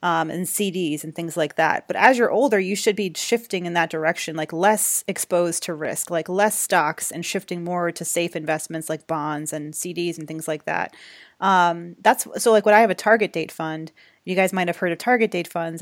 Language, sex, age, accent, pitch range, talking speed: English, female, 30-49, American, 165-200 Hz, 230 wpm